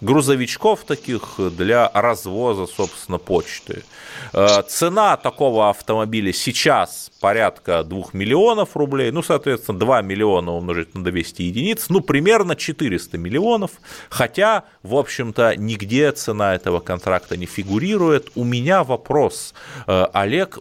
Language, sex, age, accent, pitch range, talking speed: Russian, male, 30-49, native, 100-150 Hz, 115 wpm